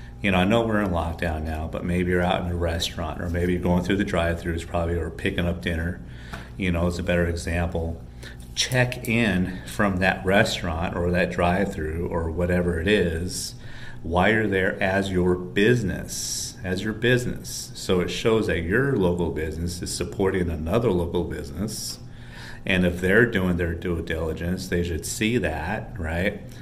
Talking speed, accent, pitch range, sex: 175 wpm, American, 85-100 Hz, male